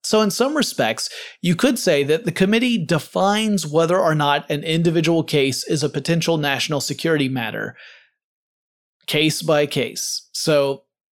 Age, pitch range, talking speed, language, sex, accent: 30-49, 140-170 Hz, 145 wpm, English, male, American